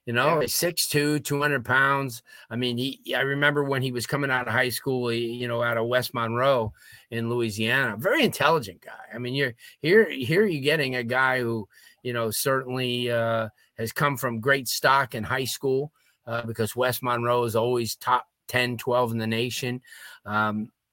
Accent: American